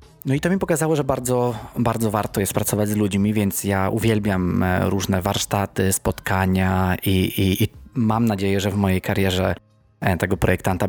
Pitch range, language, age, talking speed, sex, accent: 95-115 Hz, Polish, 20-39, 165 wpm, male, native